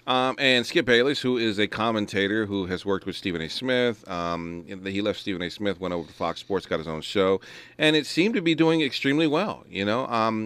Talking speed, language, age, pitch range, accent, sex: 235 wpm, English, 40-59, 95-130 Hz, American, male